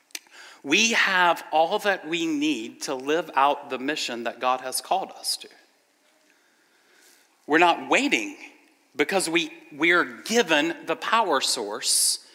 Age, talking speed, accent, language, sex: 40-59, 135 wpm, American, English, male